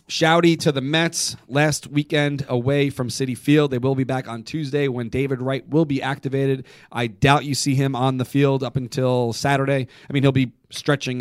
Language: English